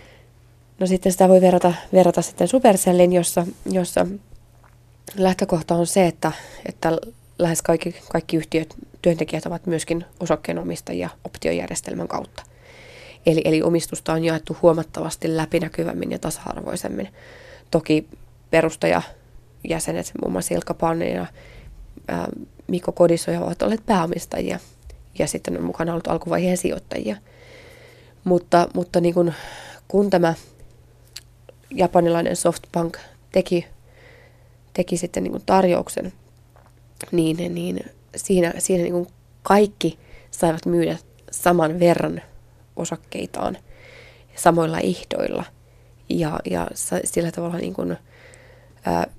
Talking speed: 105 wpm